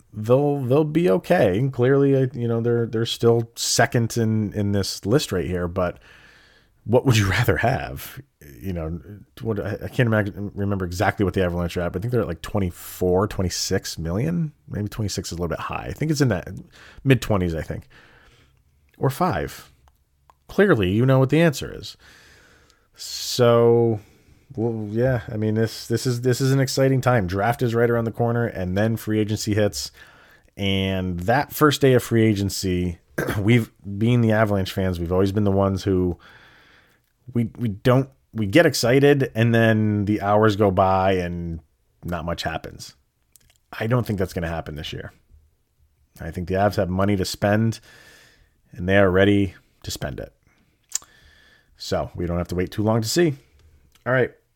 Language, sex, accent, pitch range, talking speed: English, male, American, 95-120 Hz, 180 wpm